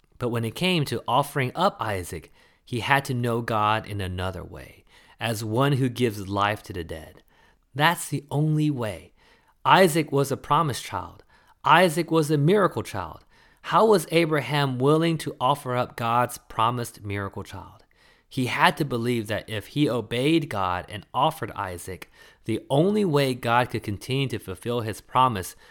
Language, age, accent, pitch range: English, 30-49, American, 95-135 Hz